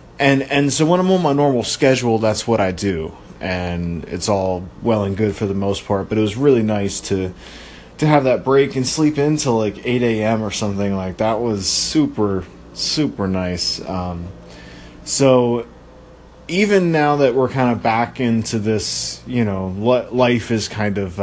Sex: male